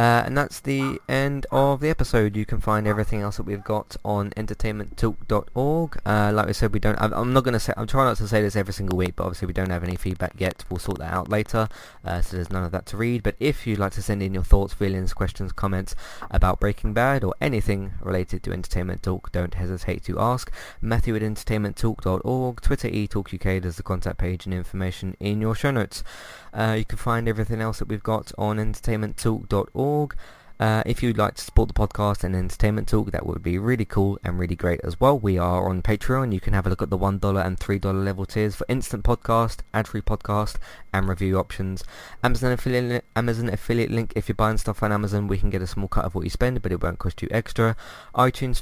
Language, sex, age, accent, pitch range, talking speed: English, male, 20-39, British, 95-110 Hz, 225 wpm